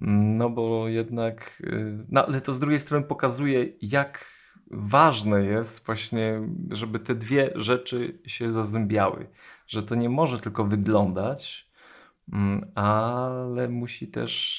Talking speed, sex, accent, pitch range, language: 120 wpm, male, native, 100-115 Hz, Polish